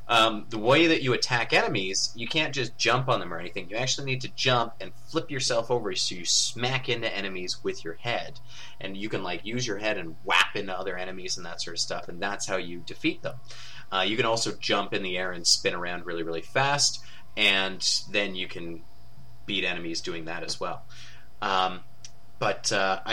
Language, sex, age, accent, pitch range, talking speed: English, male, 30-49, American, 100-135 Hz, 215 wpm